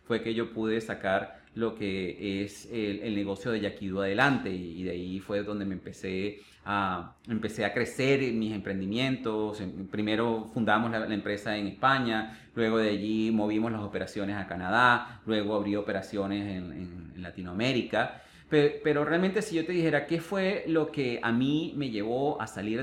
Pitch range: 100-135 Hz